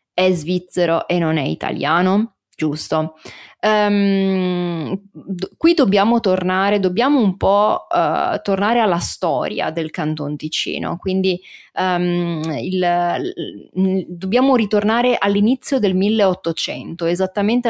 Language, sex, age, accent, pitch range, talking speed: Italian, female, 30-49, native, 165-200 Hz, 90 wpm